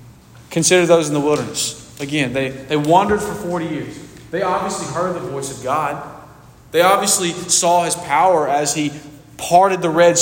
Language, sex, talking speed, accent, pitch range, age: English, male, 170 wpm, American, 145-175 Hz, 20-39